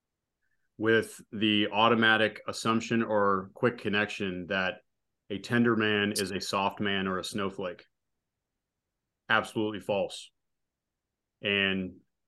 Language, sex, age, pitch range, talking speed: English, male, 30-49, 95-110 Hz, 105 wpm